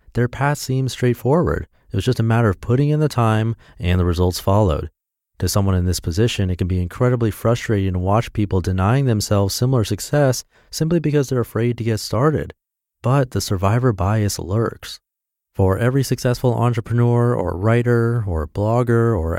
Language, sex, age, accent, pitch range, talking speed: English, male, 30-49, American, 95-125 Hz, 175 wpm